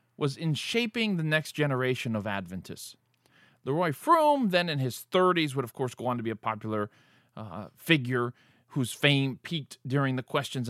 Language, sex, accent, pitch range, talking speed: English, male, American, 120-165 Hz, 175 wpm